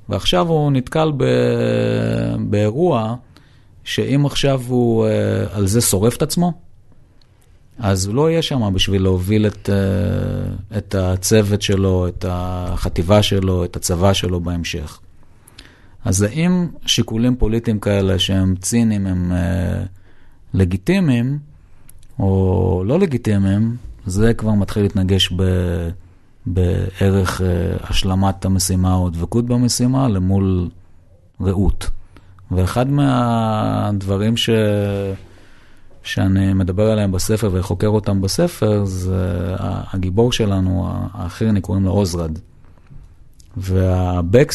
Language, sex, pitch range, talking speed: Hebrew, male, 95-115 Hz, 100 wpm